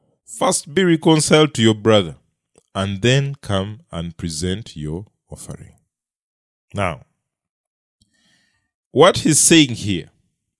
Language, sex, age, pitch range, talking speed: English, male, 30-49, 100-145 Hz, 100 wpm